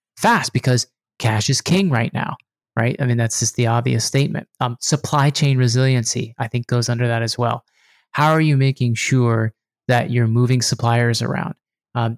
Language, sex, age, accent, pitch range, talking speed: English, male, 30-49, American, 115-135 Hz, 180 wpm